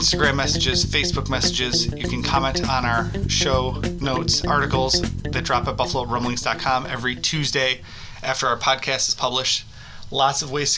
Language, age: English, 20-39